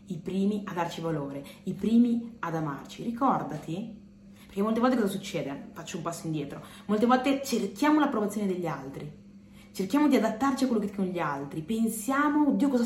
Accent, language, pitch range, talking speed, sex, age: native, Italian, 175-240 Hz, 175 wpm, female, 30-49